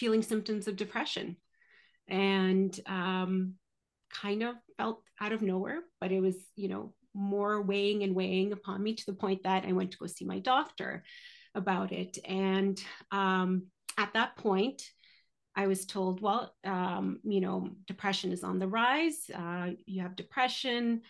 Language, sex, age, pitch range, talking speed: English, female, 30-49, 185-215 Hz, 160 wpm